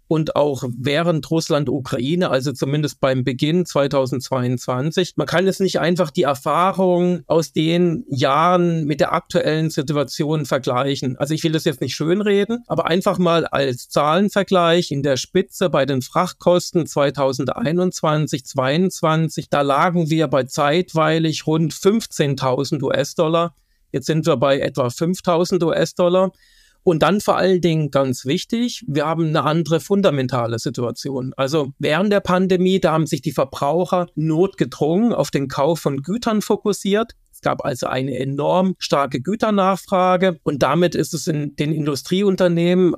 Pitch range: 145-180 Hz